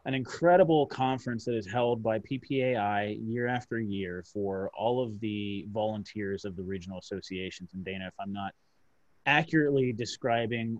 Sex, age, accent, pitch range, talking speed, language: male, 30-49, American, 100-120 Hz, 150 wpm, English